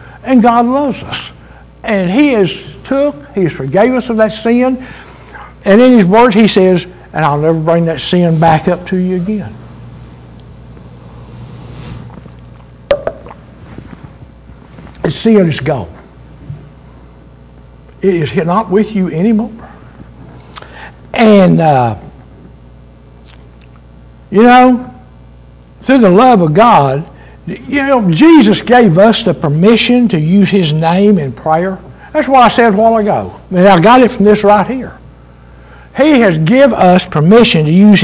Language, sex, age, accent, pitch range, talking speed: English, male, 60-79, American, 135-225 Hz, 135 wpm